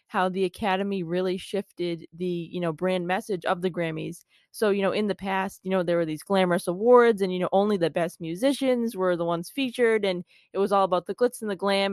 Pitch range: 175-205 Hz